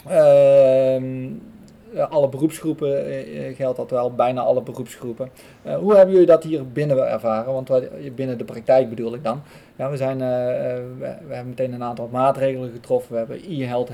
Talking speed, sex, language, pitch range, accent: 170 wpm, male, Dutch, 120-140 Hz, Dutch